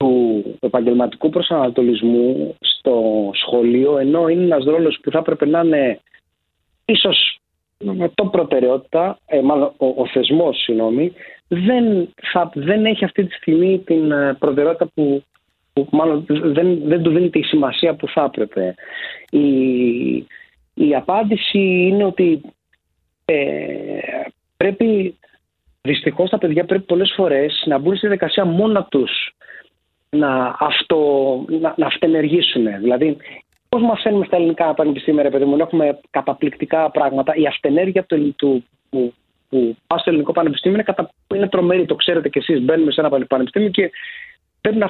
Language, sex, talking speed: Greek, male, 130 wpm